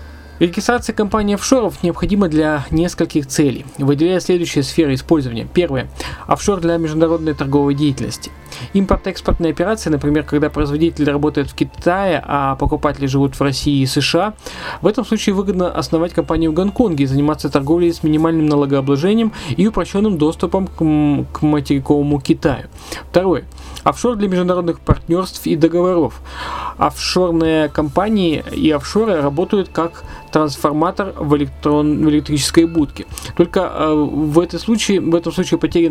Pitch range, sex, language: 145-175 Hz, male, Russian